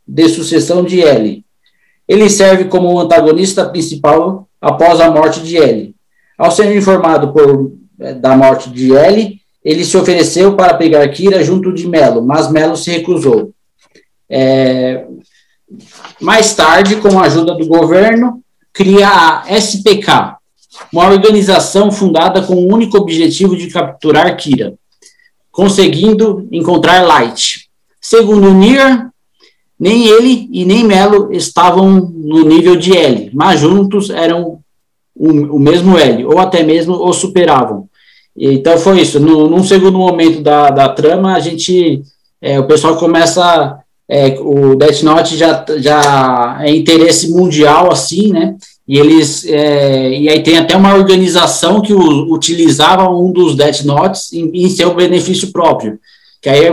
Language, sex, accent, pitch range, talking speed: Portuguese, male, Brazilian, 155-190 Hz, 140 wpm